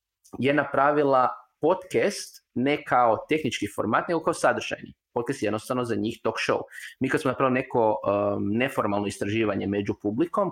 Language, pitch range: Croatian, 105-135 Hz